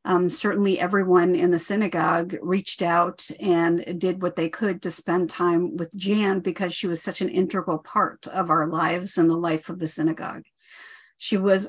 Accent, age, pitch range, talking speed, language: American, 50-69, 175-205 Hz, 185 wpm, English